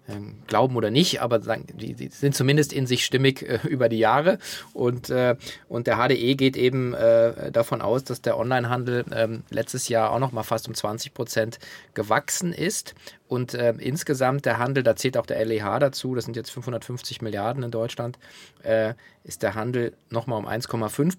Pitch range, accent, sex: 115-145 Hz, German, male